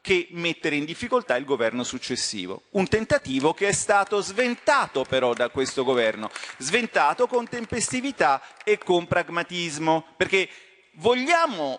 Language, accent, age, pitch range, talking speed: Italian, native, 40-59, 130-215 Hz, 125 wpm